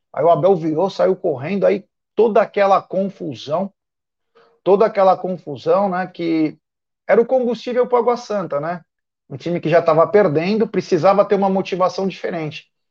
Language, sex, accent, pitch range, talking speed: Portuguese, male, Brazilian, 170-220 Hz, 160 wpm